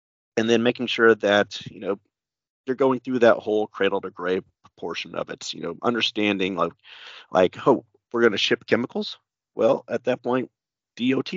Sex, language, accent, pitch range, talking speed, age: male, English, American, 95-115 Hz, 185 wpm, 30-49